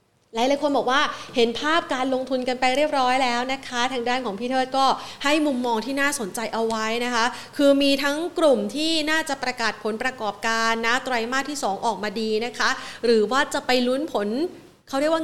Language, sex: Thai, female